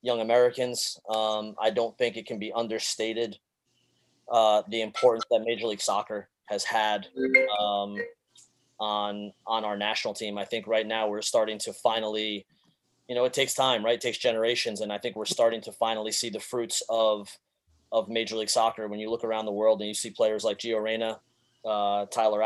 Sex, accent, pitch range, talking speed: male, American, 110-120 Hz, 190 wpm